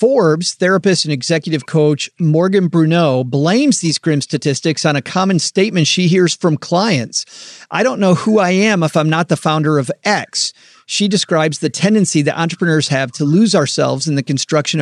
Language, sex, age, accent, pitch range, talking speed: English, male, 40-59, American, 145-185 Hz, 180 wpm